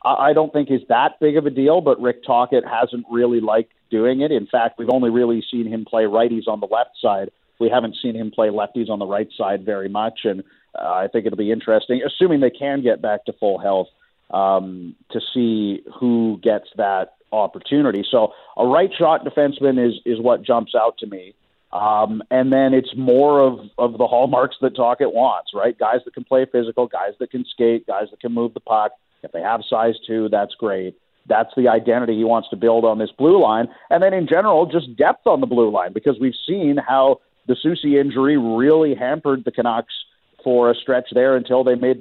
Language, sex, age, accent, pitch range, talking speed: English, male, 40-59, American, 110-130 Hz, 215 wpm